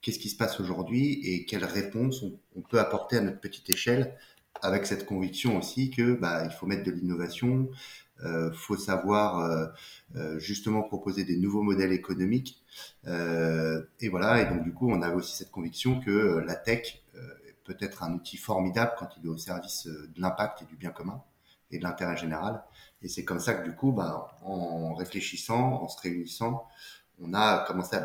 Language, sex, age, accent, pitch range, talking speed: French, male, 30-49, French, 90-110 Hz, 195 wpm